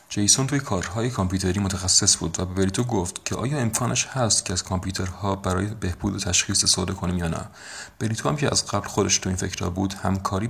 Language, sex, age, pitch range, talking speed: Persian, male, 40-59, 95-110 Hz, 200 wpm